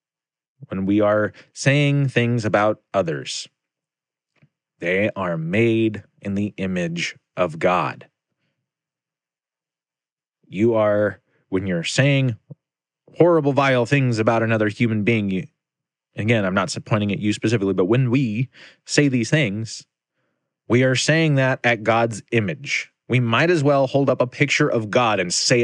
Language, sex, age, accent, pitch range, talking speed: English, male, 30-49, American, 100-145 Hz, 140 wpm